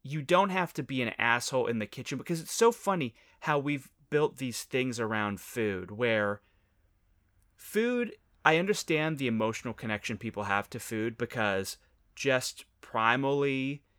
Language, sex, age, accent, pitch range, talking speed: English, male, 30-49, American, 110-140 Hz, 150 wpm